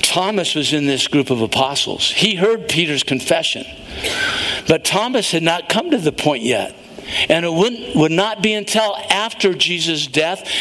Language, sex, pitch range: English, male, 160-205 Hz